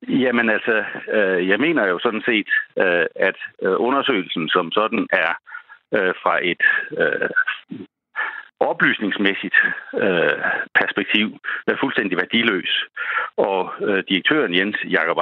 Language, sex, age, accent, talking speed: Danish, male, 60-79, native, 90 wpm